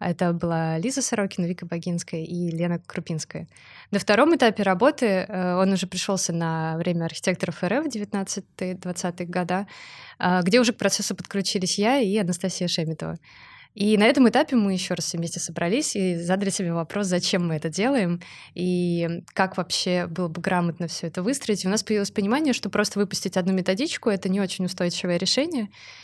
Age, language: 20-39, Russian